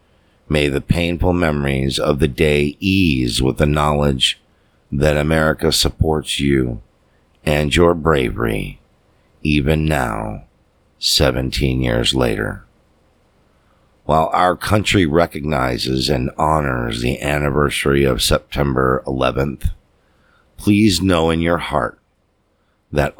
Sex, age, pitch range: male, 50-69, 70-85 Hz